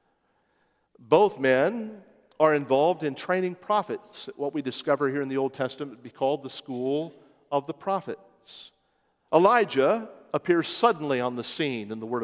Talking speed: 155 wpm